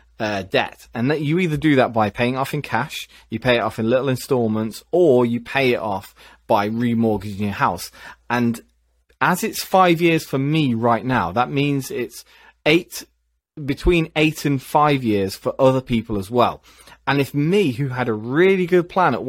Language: English